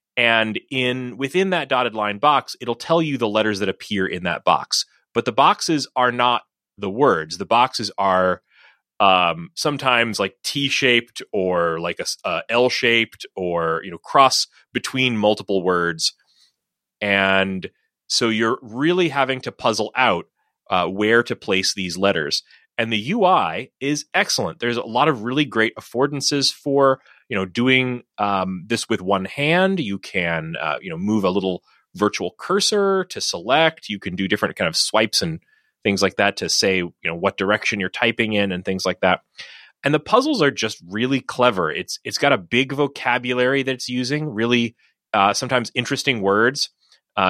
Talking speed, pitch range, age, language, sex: 175 wpm, 95-130 Hz, 30-49, English, male